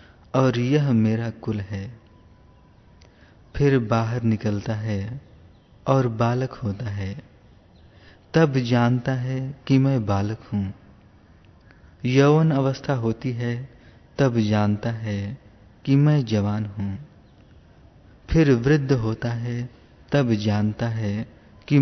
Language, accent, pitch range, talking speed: Hindi, native, 105-130 Hz, 105 wpm